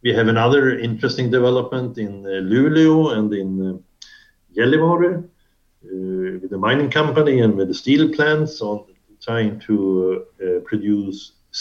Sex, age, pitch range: male, 60-79, 105-140 Hz